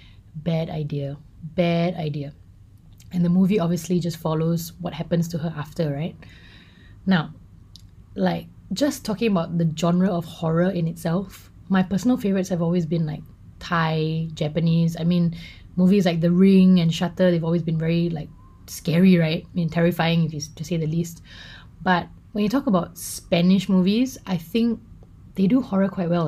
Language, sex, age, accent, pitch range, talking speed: English, female, 20-39, Malaysian, 160-190 Hz, 165 wpm